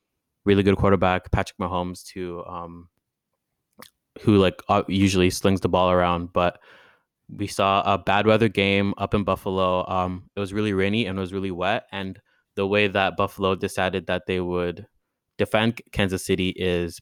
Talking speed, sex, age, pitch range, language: 165 wpm, male, 20-39, 90-100 Hz, English